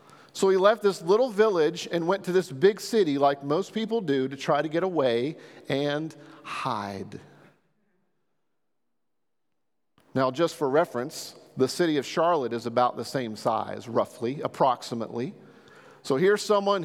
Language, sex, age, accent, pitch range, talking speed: English, male, 40-59, American, 170-225 Hz, 145 wpm